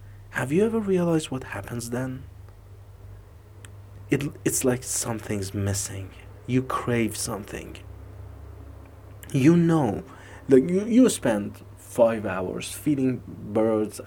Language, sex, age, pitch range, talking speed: English, male, 30-49, 95-110 Hz, 105 wpm